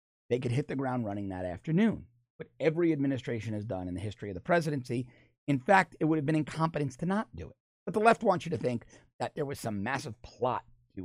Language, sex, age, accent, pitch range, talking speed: English, male, 40-59, American, 115-170 Hz, 240 wpm